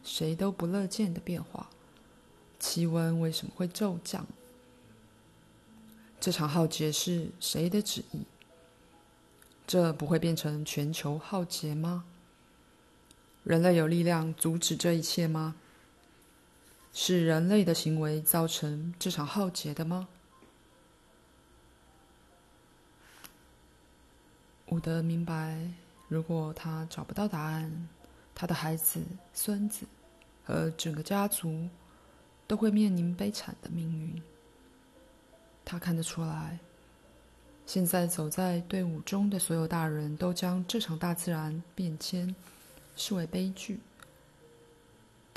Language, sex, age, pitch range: Chinese, female, 20-39, 155-180 Hz